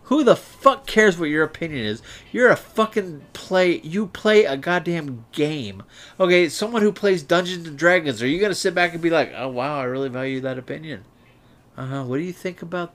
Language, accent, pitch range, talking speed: English, American, 115-165 Hz, 215 wpm